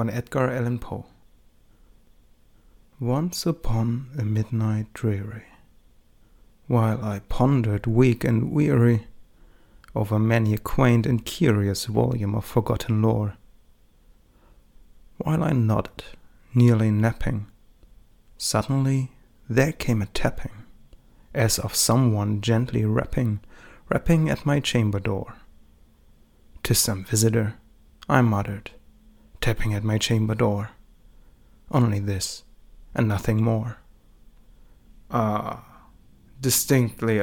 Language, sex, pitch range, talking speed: German, male, 105-120 Hz, 100 wpm